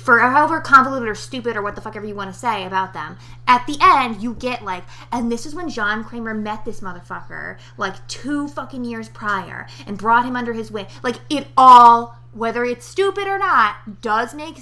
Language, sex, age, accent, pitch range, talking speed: English, female, 20-39, American, 185-240 Hz, 215 wpm